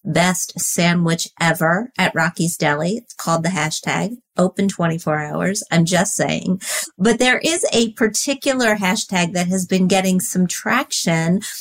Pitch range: 175-220 Hz